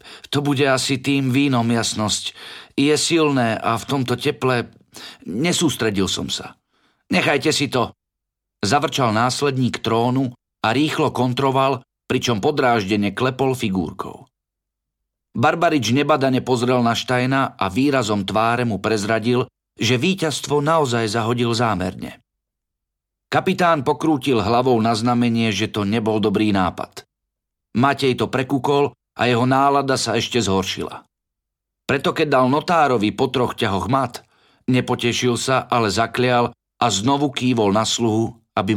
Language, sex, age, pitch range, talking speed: Slovak, male, 50-69, 110-140 Hz, 125 wpm